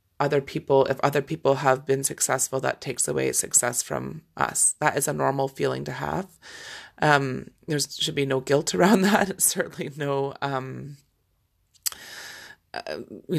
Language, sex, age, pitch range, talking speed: English, female, 30-49, 135-165 Hz, 155 wpm